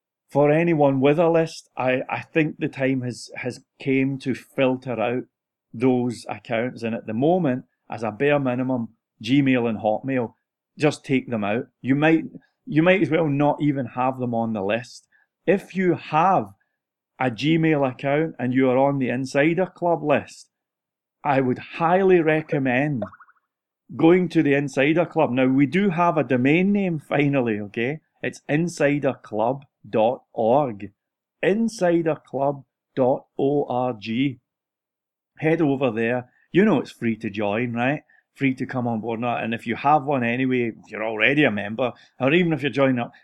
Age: 30-49